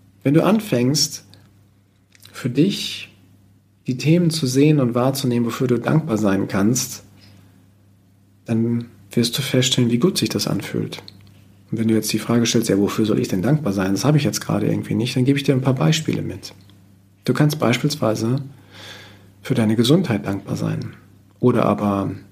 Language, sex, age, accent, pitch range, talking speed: German, male, 40-59, German, 110-155 Hz, 170 wpm